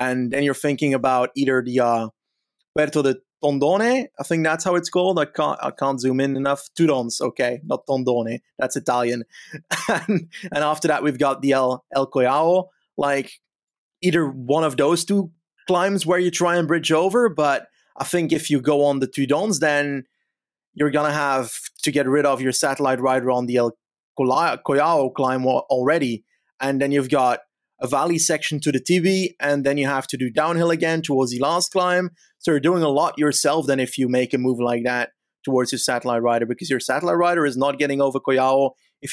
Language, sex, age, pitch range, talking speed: English, male, 30-49, 130-160 Hz, 200 wpm